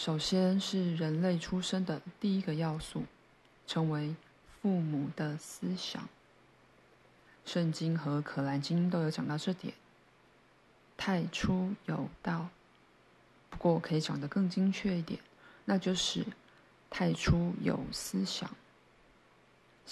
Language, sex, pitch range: Chinese, female, 150-180 Hz